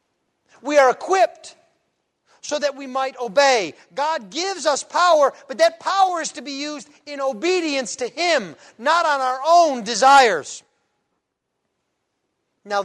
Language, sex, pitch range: English, male, 255-320 Hz